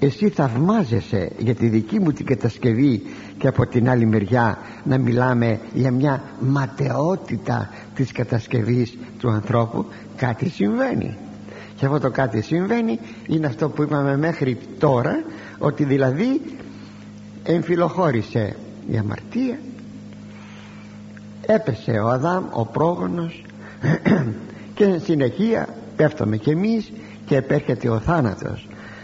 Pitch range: 105-175 Hz